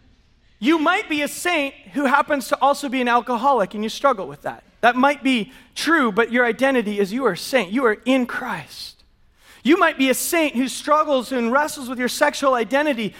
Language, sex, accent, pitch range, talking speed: English, male, American, 210-275 Hz, 210 wpm